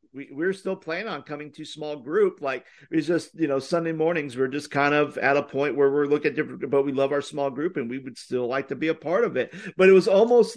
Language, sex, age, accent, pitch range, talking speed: English, male, 50-69, American, 145-190 Hz, 285 wpm